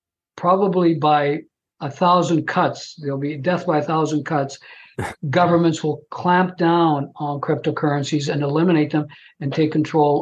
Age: 60-79